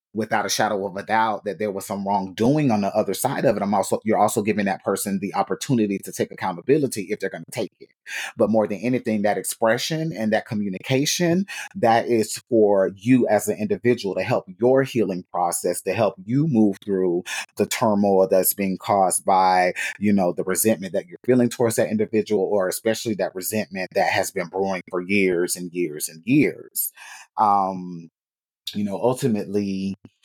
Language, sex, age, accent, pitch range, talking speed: English, male, 30-49, American, 95-110 Hz, 185 wpm